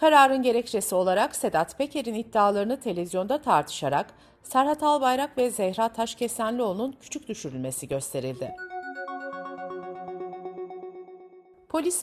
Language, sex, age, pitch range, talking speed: Turkish, female, 50-69, 180-260 Hz, 85 wpm